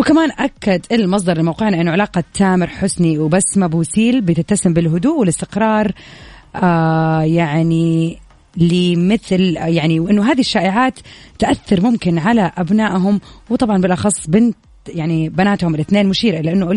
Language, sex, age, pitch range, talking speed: Arabic, female, 30-49, 170-220 Hz, 115 wpm